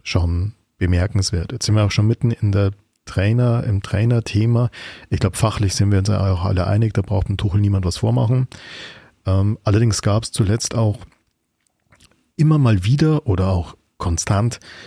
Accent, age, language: German, 40-59, German